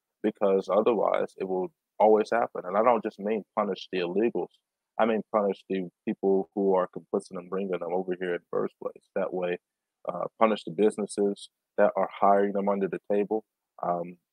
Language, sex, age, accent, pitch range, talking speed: English, male, 20-39, American, 95-105 Hz, 190 wpm